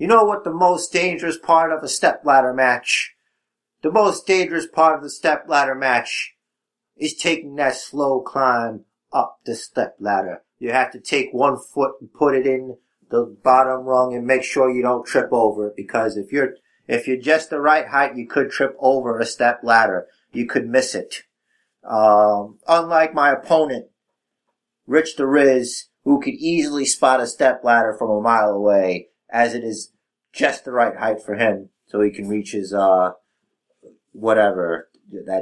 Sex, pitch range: male, 110-155 Hz